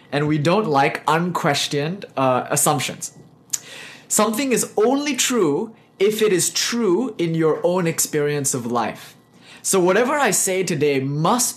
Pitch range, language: 135-185 Hz, English